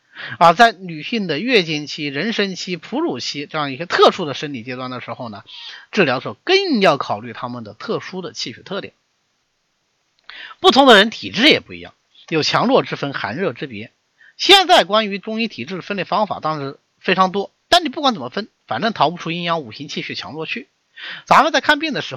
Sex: male